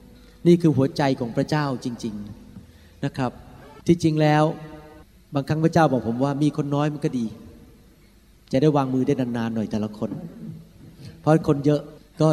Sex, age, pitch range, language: male, 30-49, 115-155 Hz, Thai